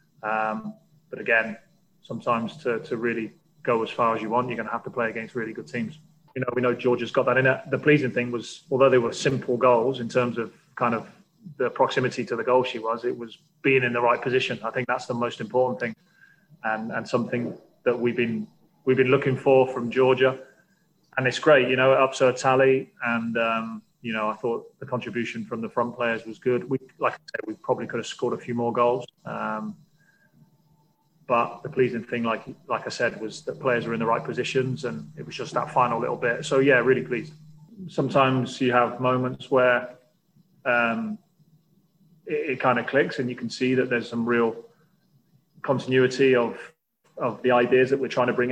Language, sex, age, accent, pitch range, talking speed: English, male, 20-39, British, 120-140 Hz, 215 wpm